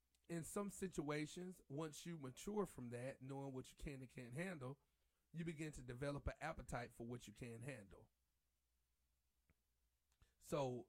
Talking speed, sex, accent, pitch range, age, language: 150 wpm, male, American, 115-165 Hz, 30-49, English